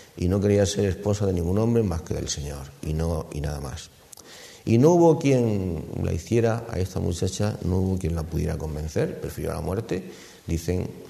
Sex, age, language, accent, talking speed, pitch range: male, 50-69, Spanish, Spanish, 200 wpm, 85-120 Hz